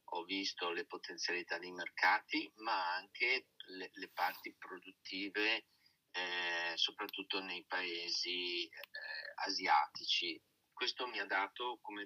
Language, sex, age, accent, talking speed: Italian, male, 30-49, native, 115 wpm